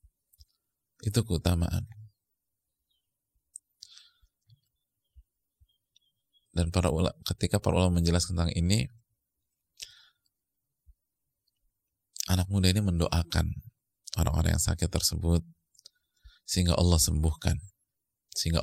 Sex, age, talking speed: male, 30-49, 75 wpm